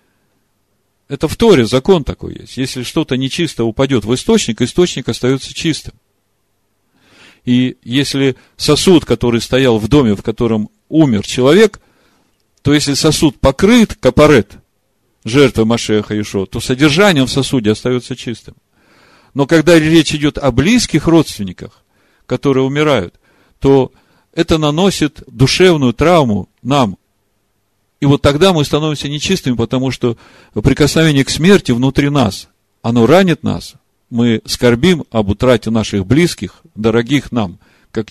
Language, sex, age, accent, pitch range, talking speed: Russian, male, 40-59, native, 105-140 Hz, 125 wpm